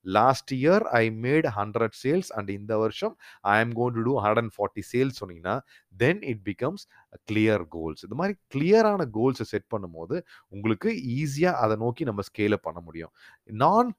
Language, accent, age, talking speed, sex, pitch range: Tamil, native, 30-49, 165 wpm, male, 105-140 Hz